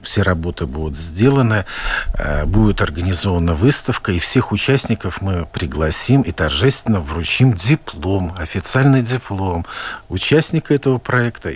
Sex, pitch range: male, 95-135 Hz